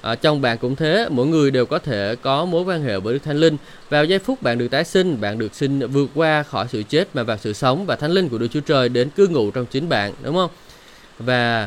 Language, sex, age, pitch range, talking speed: Vietnamese, male, 20-39, 120-155 Hz, 275 wpm